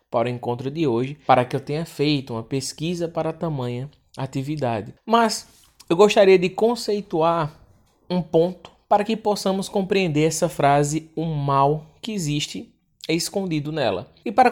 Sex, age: male, 20-39